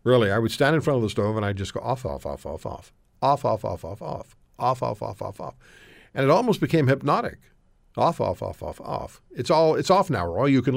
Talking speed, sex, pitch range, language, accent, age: 245 wpm, male, 95-140 Hz, English, American, 50-69